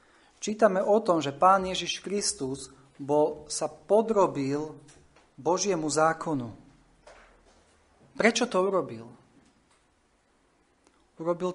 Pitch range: 140-180 Hz